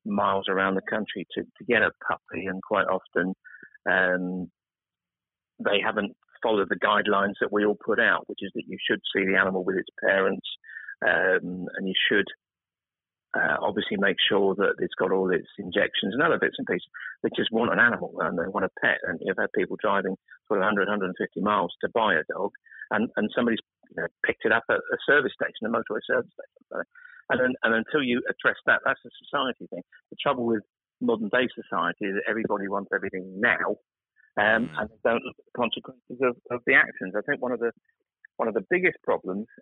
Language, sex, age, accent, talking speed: English, male, 50-69, British, 200 wpm